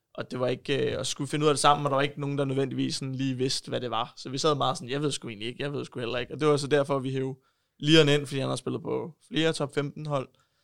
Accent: native